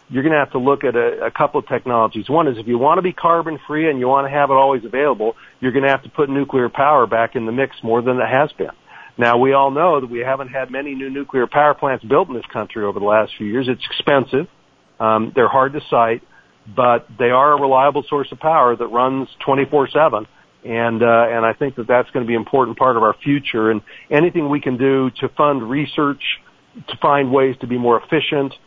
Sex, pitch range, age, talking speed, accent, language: male, 120-140 Hz, 50-69, 245 wpm, American, English